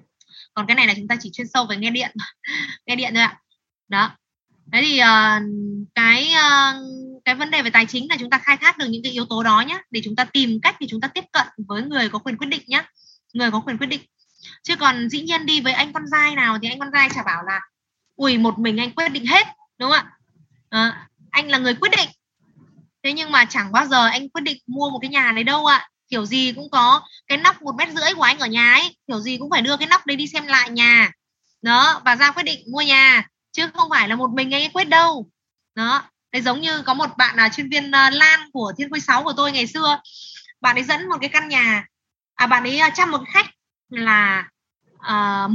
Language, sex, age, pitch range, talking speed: Vietnamese, female, 20-39, 230-290 Hz, 250 wpm